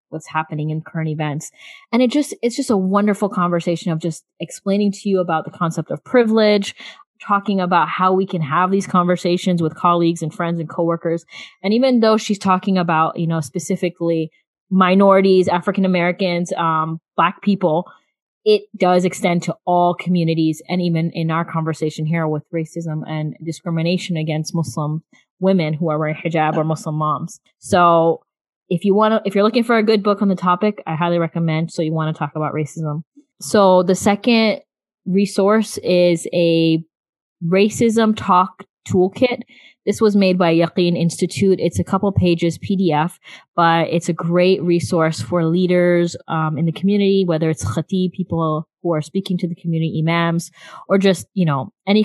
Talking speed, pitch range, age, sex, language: 175 wpm, 165-195 Hz, 20-39, female, English